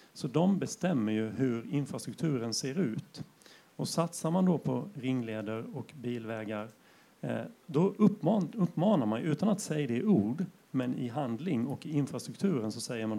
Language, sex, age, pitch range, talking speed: Swedish, male, 40-59, 120-170 Hz, 155 wpm